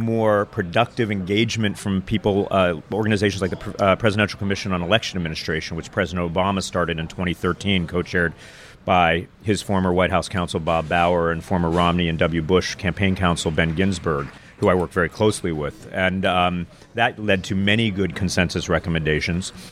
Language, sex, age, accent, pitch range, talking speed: English, male, 40-59, American, 85-105 Hz, 165 wpm